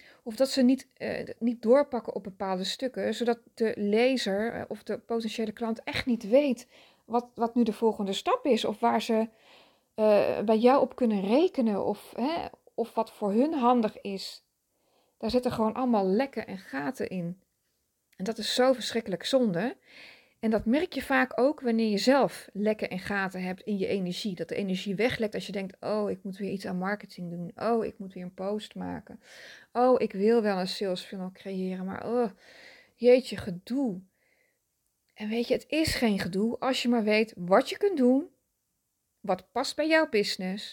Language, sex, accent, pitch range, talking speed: Dutch, female, Dutch, 200-250 Hz, 185 wpm